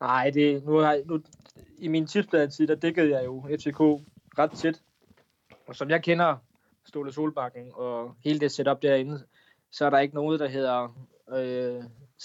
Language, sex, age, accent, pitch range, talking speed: Danish, male, 20-39, native, 130-150 Hz, 165 wpm